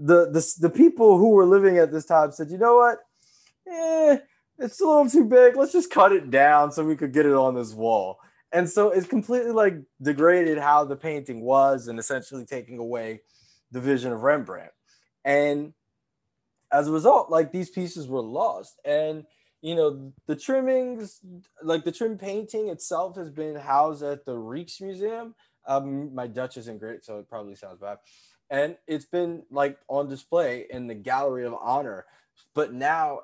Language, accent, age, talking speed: English, American, 20-39, 180 wpm